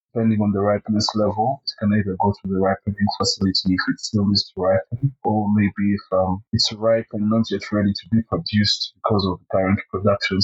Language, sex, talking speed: English, male, 215 wpm